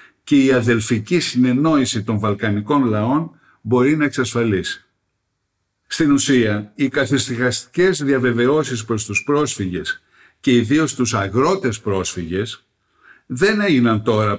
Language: Greek